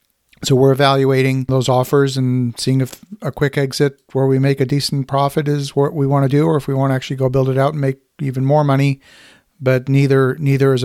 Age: 50-69